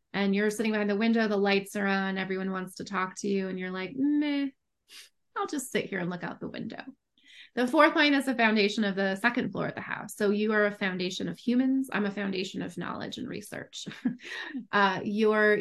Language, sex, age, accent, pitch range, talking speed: English, female, 30-49, American, 190-230 Hz, 220 wpm